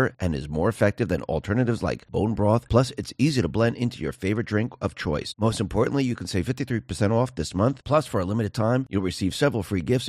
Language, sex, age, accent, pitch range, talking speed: English, male, 40-59, American, 90-120 Hz, 230 wpm